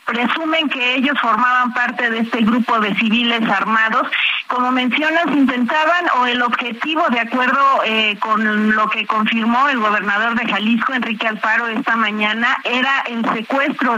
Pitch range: 220-260 Hz